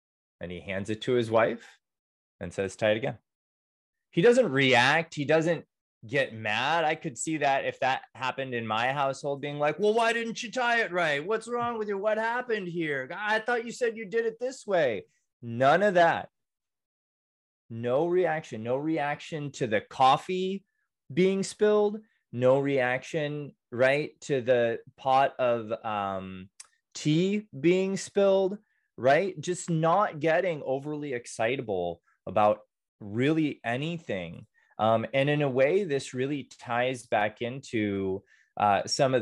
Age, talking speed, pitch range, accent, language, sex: 20-39, 150 wpm, 105-165 Hz, American, English, male